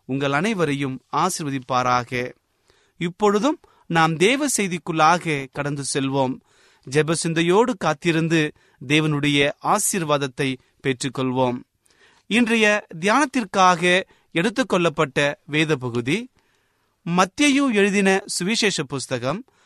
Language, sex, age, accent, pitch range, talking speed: Tamil, male, 30-49, native, 140-200 Hz, 70 wpm